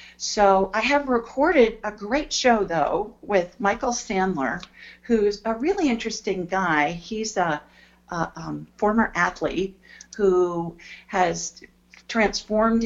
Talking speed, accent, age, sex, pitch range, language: 115 wpm, American, 50-69, female, 155-205 Hz, English